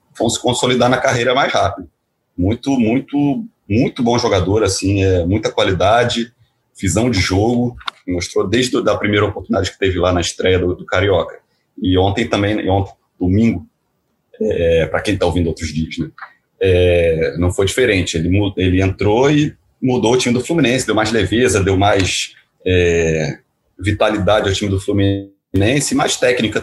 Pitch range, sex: 95-120 Hz, male